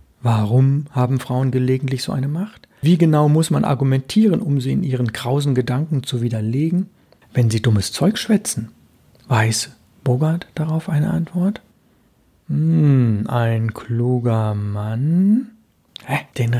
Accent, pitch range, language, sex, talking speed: German, 115-145 Hz, German, male, 130 wpm